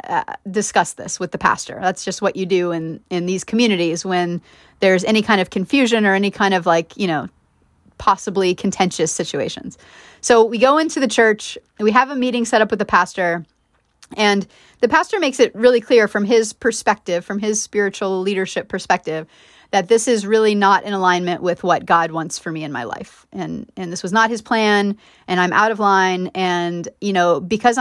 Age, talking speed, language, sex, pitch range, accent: 30-49, 200 wpm, English, female, 185-235 Hz, American